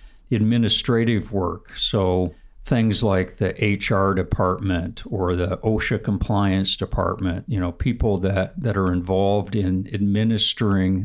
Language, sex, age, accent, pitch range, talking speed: English, male, 50-69, American, 95-110 Hz, 120 wpm